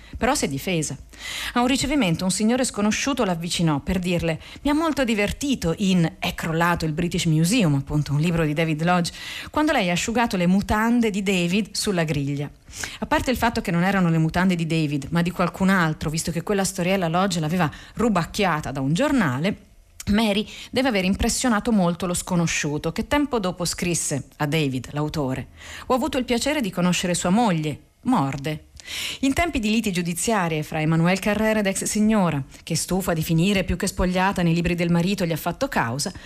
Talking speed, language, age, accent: 185 wpm, Italian, 40-59, native